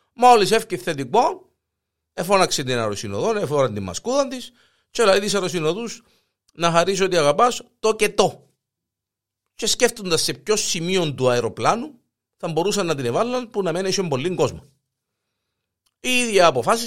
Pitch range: 135-225 Hz